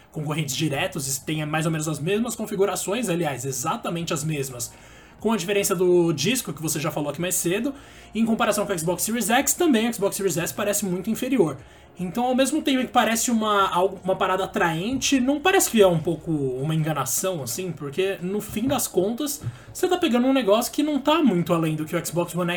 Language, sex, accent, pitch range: Portuguese, male, Brazilian, 160-205 Hz